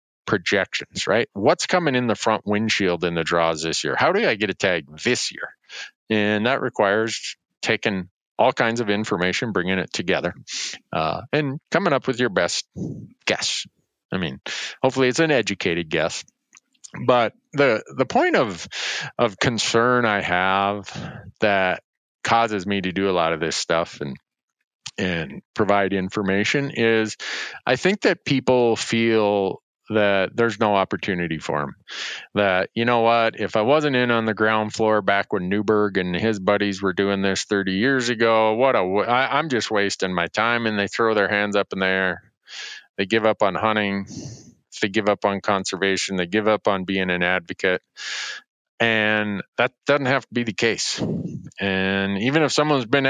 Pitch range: 95-120 Hz